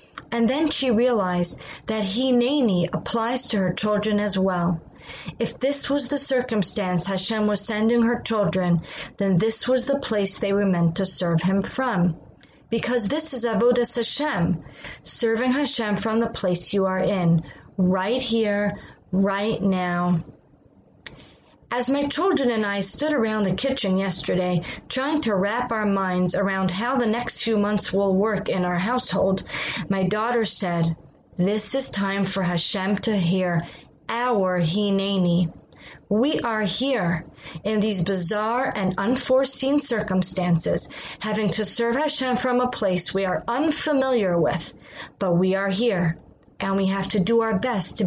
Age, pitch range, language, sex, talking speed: 30-49, 185-235 Hz, English, female, 150 wpm